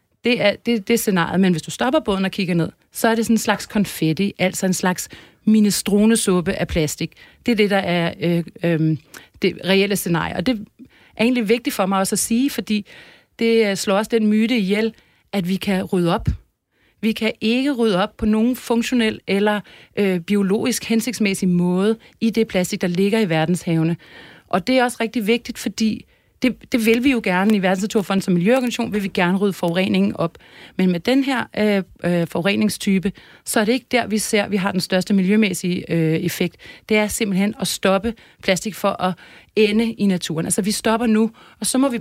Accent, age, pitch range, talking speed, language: native, 40-59, 185-225 Hz, 205 wpm, Danish